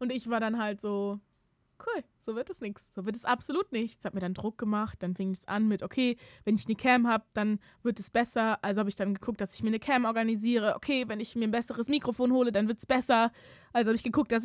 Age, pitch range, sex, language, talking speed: 20-39, 210-265 Hz, female, German, 265 wpm